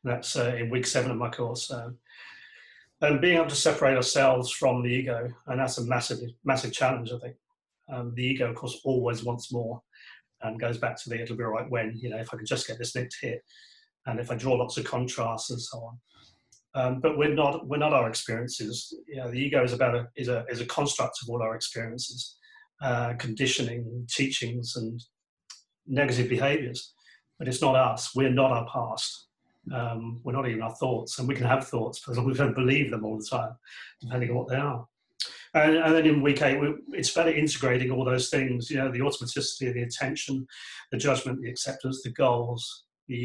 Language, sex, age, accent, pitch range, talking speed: English, male, 40-59, British, 120-140 Hz, 215 wpm